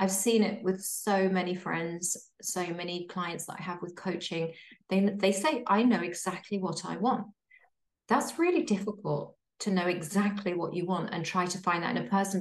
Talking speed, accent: 200 wpm, British